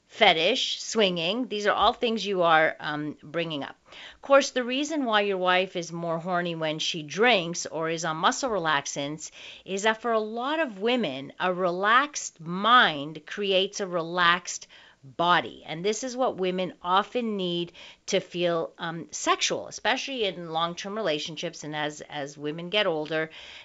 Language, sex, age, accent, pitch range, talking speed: English, female, 40-59, American, 160-220 Hz, 160 wpm